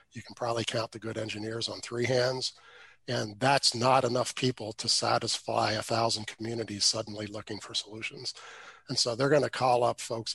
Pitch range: 110-130 Hz